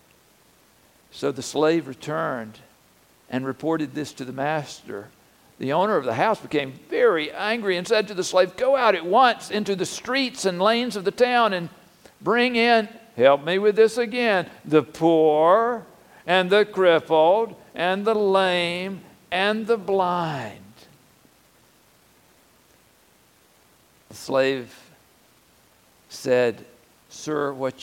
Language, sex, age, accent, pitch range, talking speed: English, male, 60-79, American, 110-175 Hz, 125 wpm